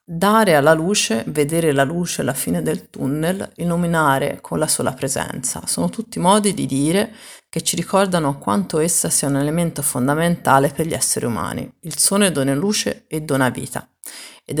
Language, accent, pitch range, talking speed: Italian, native, 145-190 Hz, 170 wpm